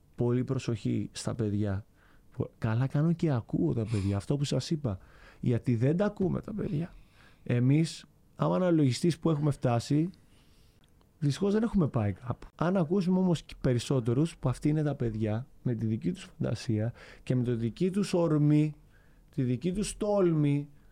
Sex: male